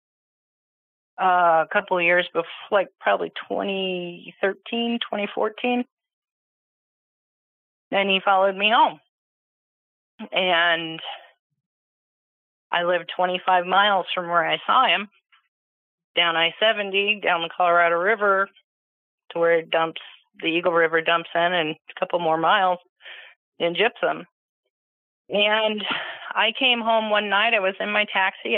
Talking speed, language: 120 wpm, English